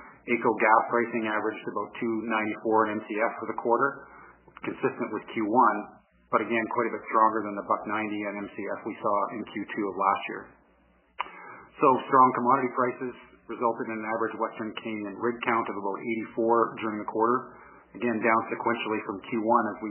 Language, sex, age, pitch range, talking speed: English, male, 40-59, 105-120 Hz, 170 wpm